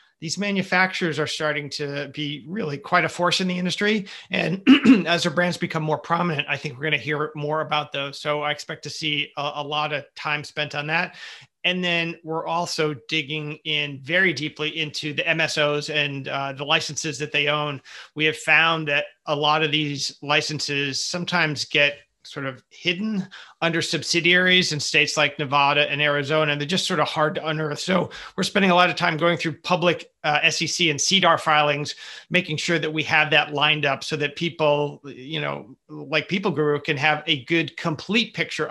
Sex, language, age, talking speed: male, English, 30-49, 195 wpm